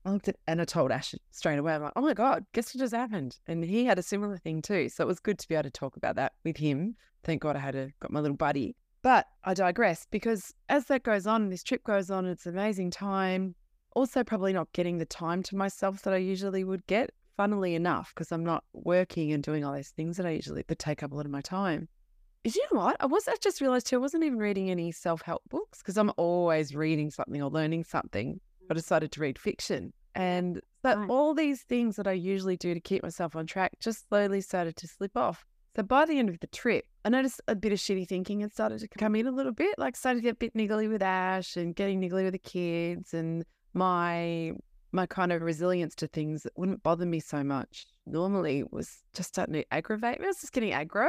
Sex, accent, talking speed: female, Australian, 245 wpm